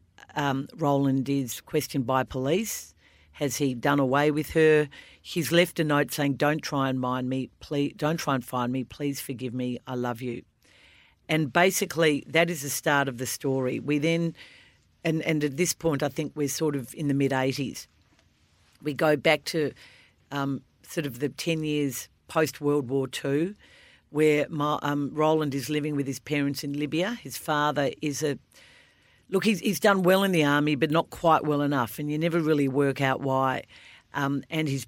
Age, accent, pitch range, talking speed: 50-69, Australian, 135-155 Hz, 190 wpm